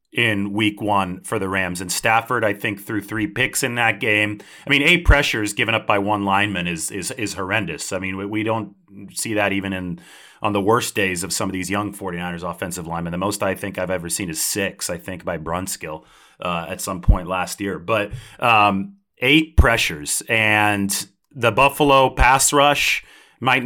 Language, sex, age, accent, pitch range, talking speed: English, male, 30-49, American, 95-110 Hz, 200 wpm